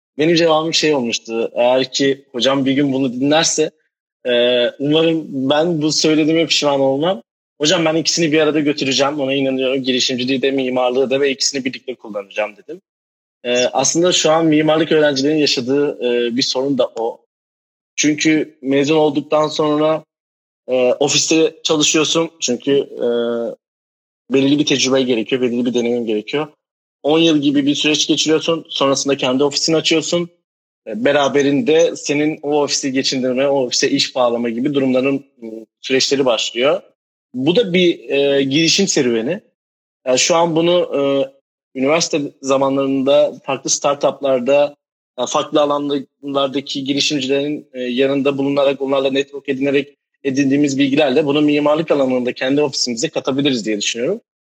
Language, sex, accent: Turkish, male, native